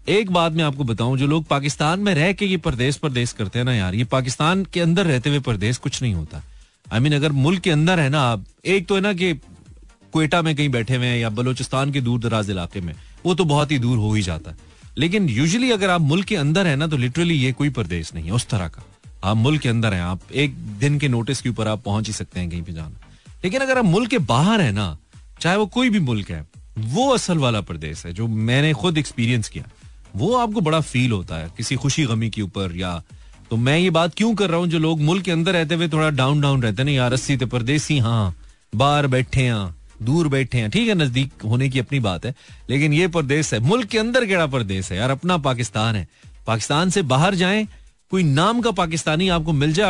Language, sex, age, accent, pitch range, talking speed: Hindi, male, 30-49, native, 110-165 Hz, 235 wpm